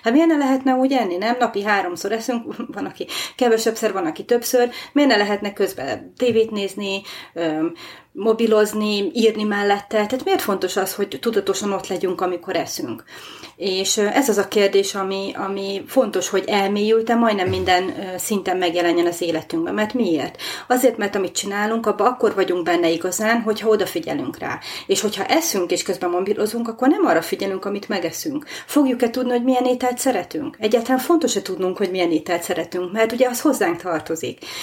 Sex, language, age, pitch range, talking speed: female, Hungarian, 30-49, 195-240 Hz, 165 wpm